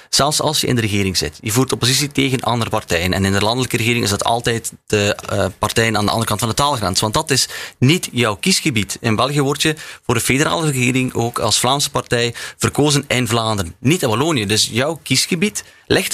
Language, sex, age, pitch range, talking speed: Dutch, male, 30-49, 105-135 Hz, 220 wpm